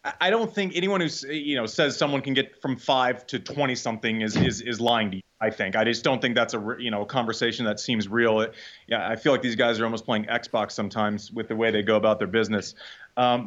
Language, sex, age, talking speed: English, male, 30-49, 260 wpm